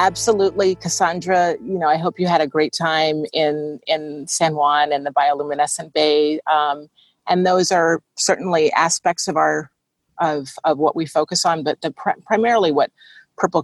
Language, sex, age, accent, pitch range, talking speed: English, female, 40-59, American, 150-180 Hz, 170 wpm